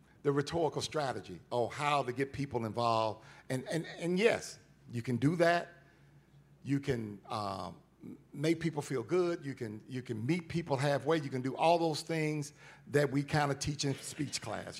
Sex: male